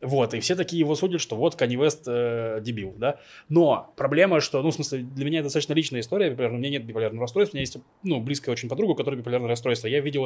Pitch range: 125-155 Hz